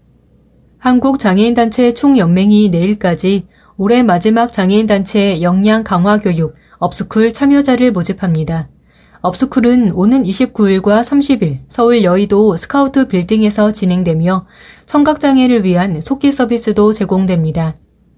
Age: 30-49